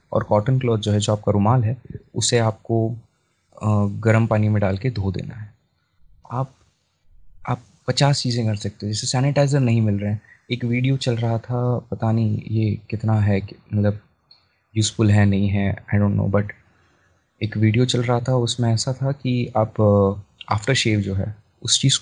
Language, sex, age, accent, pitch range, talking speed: Hindi, male, 20-39, native, 100-120 Hz, 185 wpm